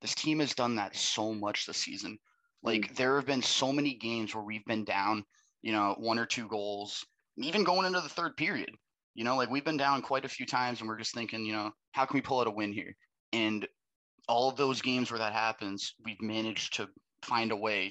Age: 20-39